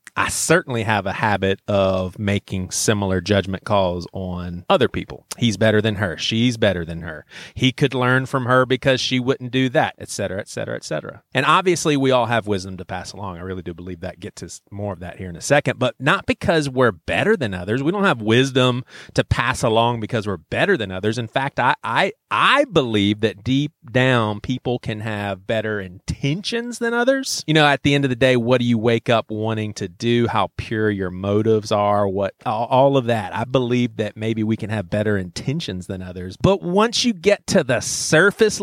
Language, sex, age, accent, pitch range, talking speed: English, male, 30-49, American, 105-145 Hz, 215 wpm